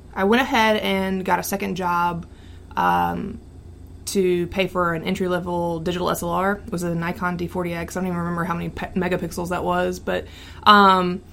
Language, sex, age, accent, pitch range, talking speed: English, female, 20-39, American, 175-195 Hz, 175 wpm